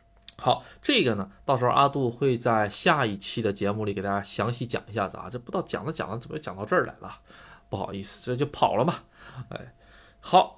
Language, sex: Chinese, male